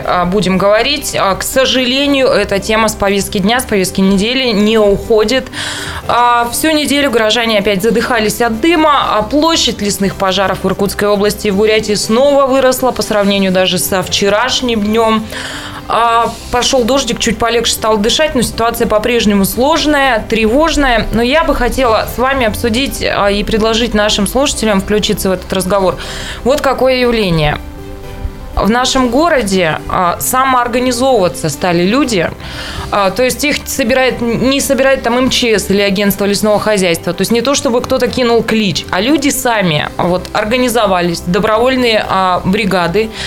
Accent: native